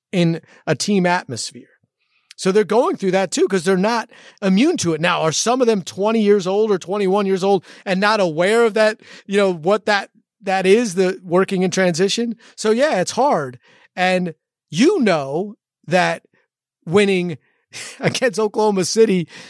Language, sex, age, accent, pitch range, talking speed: English, male, 30-49, American, 165-210 Hz, 170 wpm